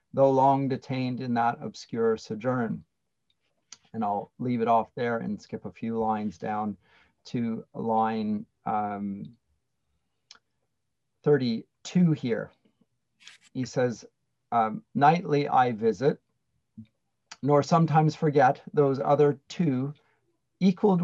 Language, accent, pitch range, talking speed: English, American, 115-155 Hz, 105 wpm